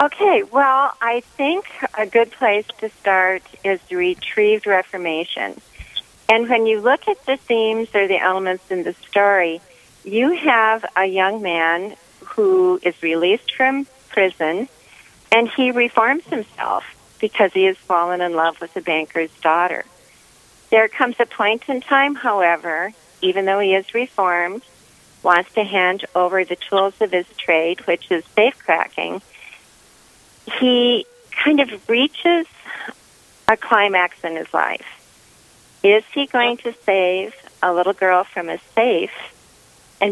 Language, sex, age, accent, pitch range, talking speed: English, female, 40-59, American, 175-240 Hz, 140 wpm